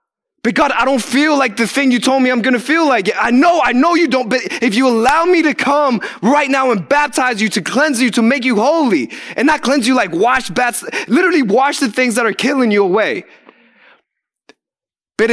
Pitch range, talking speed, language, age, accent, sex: 205-275 Hz, 225 wpm, English, 20-39, American, male